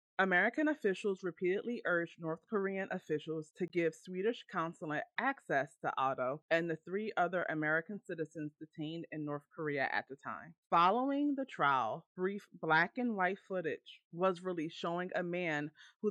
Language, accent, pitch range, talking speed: English, American, 160-210 Hz, 155 wpm